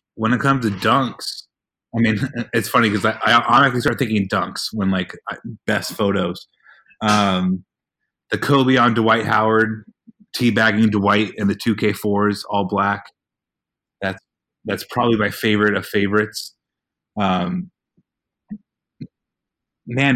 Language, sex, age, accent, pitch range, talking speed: English, male, 30-49, American, 105-125 Hz, 130 wpm